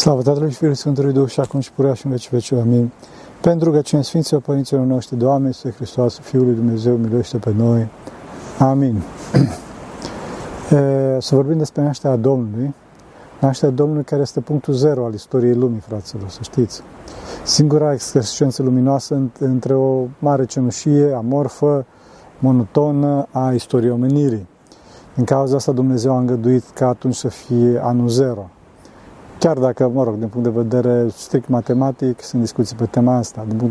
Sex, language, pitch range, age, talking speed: male, Romanian, 120-140 Hz, 40-59, 155 wpm